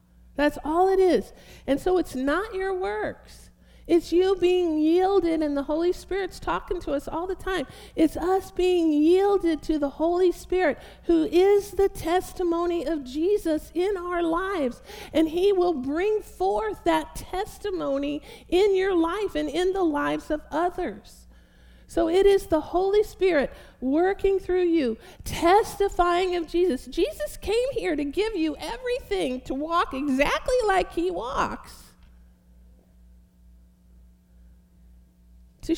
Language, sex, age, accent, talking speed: English, female, 50-69, American, 140 wpm